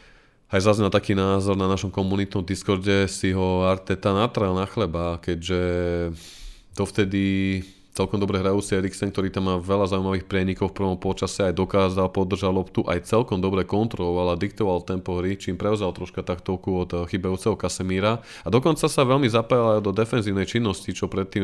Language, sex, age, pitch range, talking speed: Slovak, male, 20-39, 90-105 Hz, 170 wpm